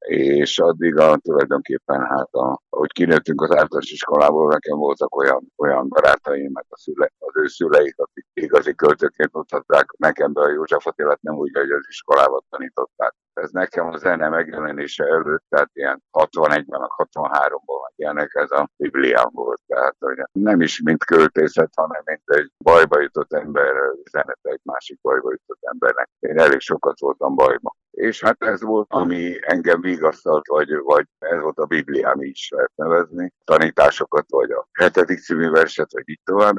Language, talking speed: Hungarian, 165 wpm